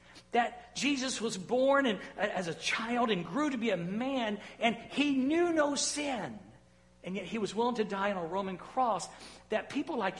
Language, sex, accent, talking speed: English, male, American, 195 wpm